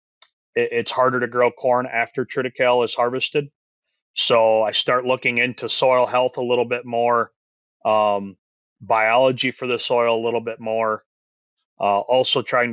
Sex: male